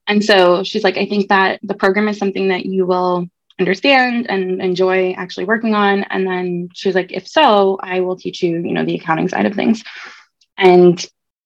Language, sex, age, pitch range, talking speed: English, female, 20-39, 180-205 Hz, 200 wpm